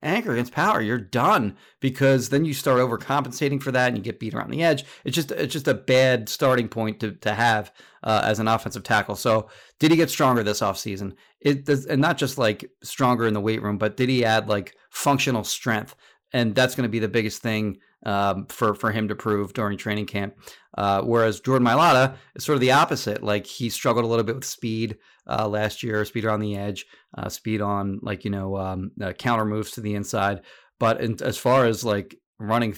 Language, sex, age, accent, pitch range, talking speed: English, male, 30-49, American, 105-130 Hz, 220 wpm